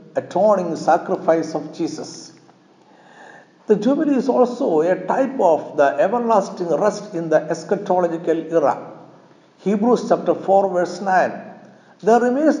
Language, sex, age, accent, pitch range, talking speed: Malayalam, male, 60-79, native, 160-215 Hz, 120 wpm